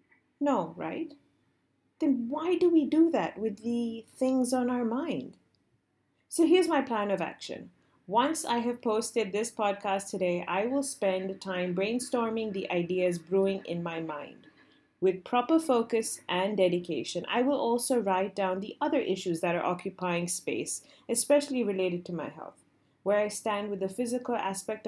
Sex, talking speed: female, 160 wpm